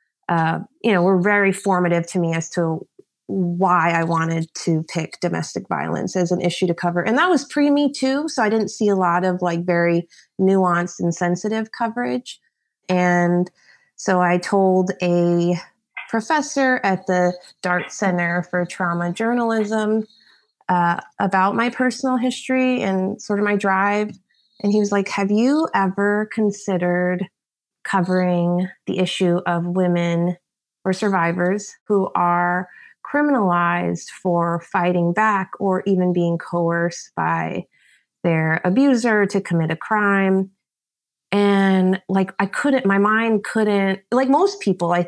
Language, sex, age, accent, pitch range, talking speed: English, female, 30-49, American, 175-210 Hz, 140 wpm